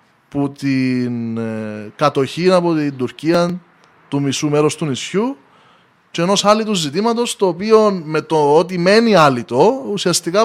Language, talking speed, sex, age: Greek, 145 wpm, male, 20-39